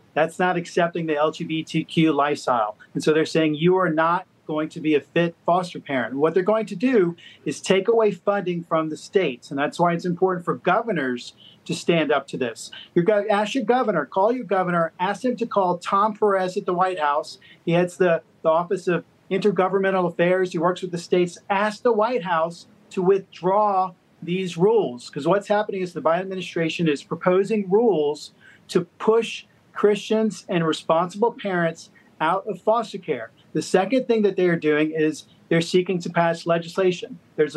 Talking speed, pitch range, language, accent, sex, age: 180 wpm, 160-200 Hz, English, American, male, 40-59